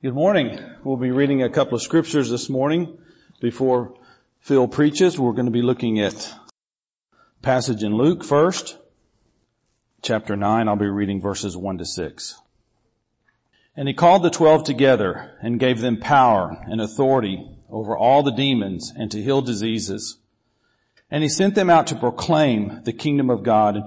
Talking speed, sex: 165 wpm, male